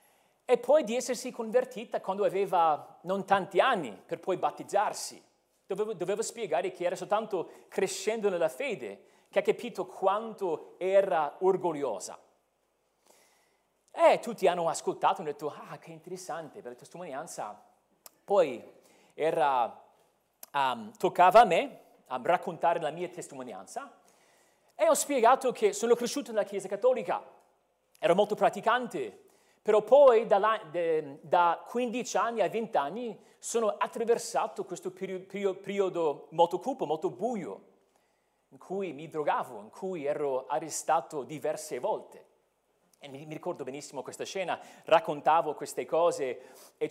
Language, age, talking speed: Italian, 40-59, 130 wpm